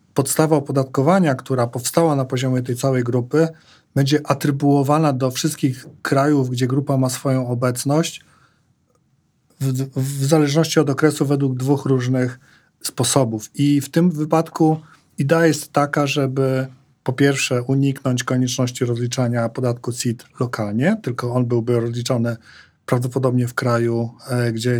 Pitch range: 125-145 Hz